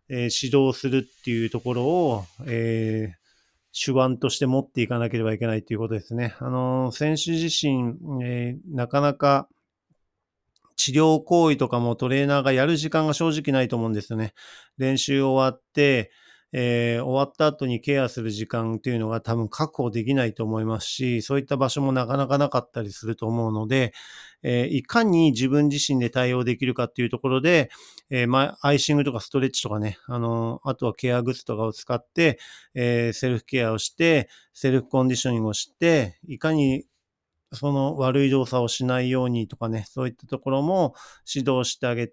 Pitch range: 115-140 Hz